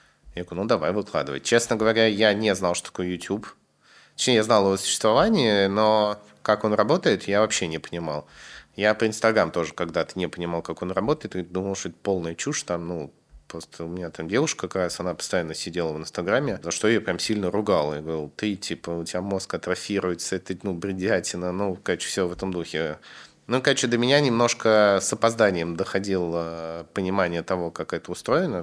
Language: Russian